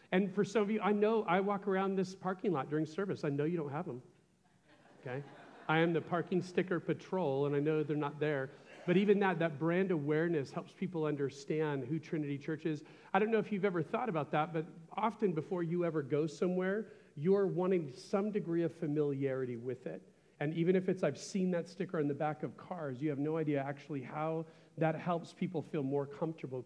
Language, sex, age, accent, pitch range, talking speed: English, male, 40-59, American, 145-185 Hz, 215 wpm